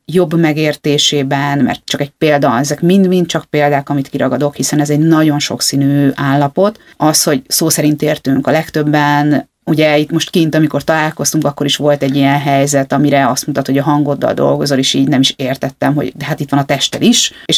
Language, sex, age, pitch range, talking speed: Hungarian, female, 30-49, 145-175 Hz, 200 wpm